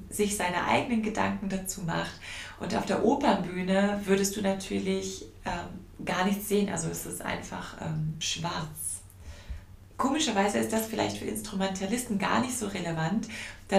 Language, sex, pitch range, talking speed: German, female, 165-215 Hz, 150 wpm